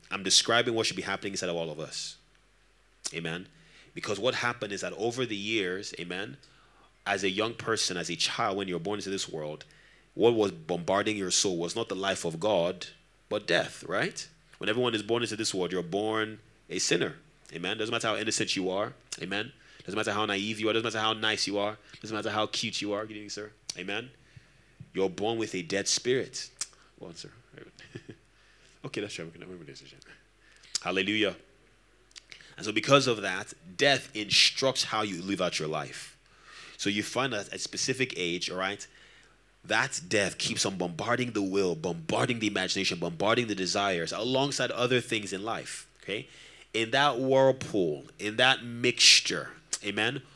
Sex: male